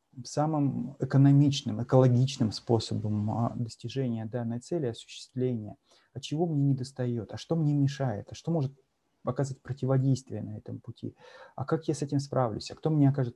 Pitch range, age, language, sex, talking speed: 115-140 Hz, 30-49, Russian, male, 155 wpm